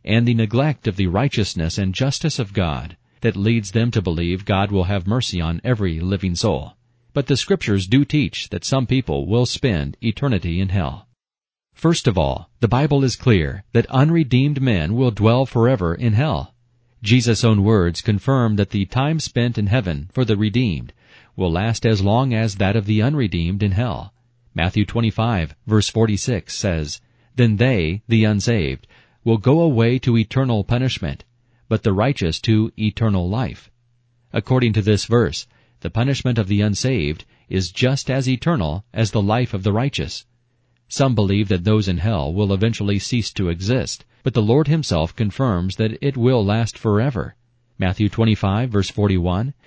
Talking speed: 170 wpm